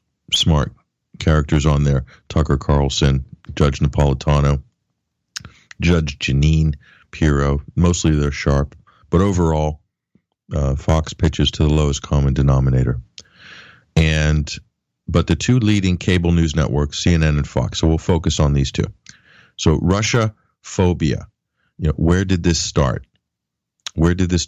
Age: 40-59